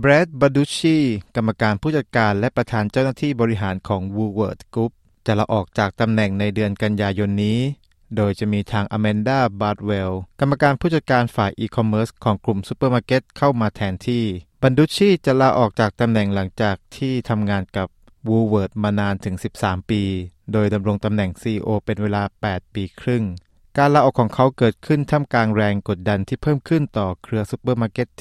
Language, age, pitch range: Thai, 20-39, 100-125 Hz